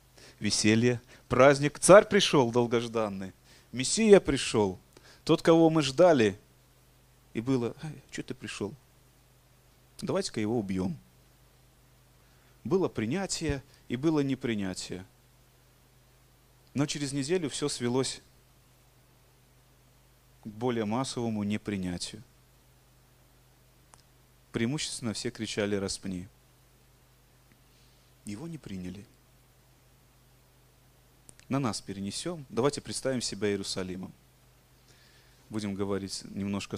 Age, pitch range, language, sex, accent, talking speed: 30-49, 105-130 Hz, Russian, male, native, 80 wpm